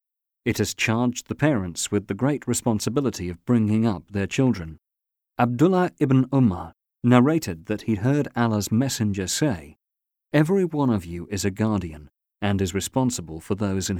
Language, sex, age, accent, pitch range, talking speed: English, male, 40-59, British, 95-125 Hz, 160 wpm